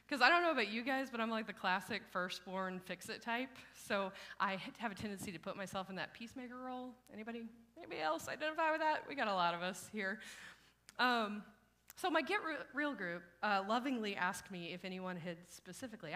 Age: 30-49